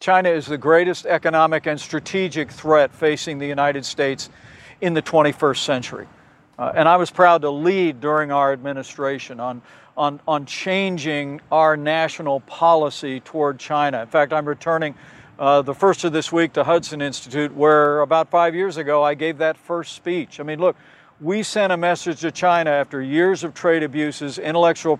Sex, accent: male, American